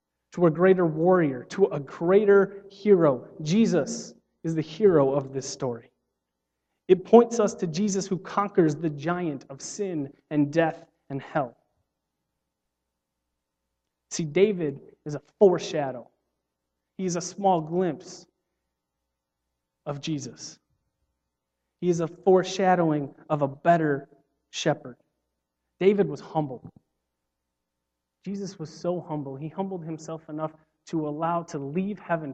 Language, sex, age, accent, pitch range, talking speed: English, male, 30-49, American, 130-180 Hz, 120 wpm